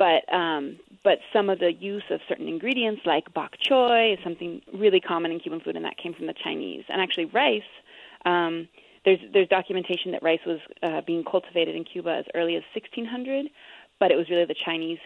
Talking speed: 205 wpm